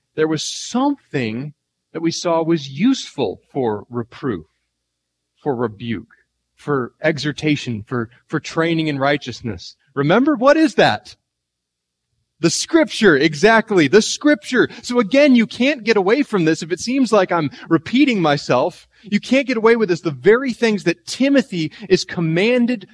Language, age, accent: English, 30-49, American